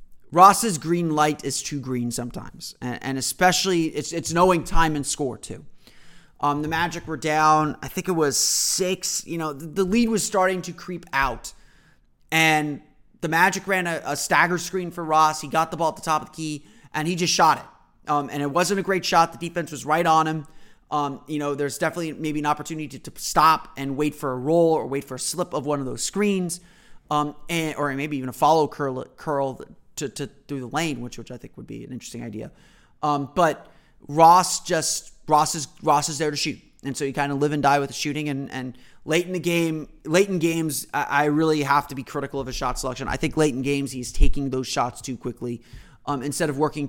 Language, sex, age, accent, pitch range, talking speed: English, male, 30-49, American, 135-165 Hz, 230 wpm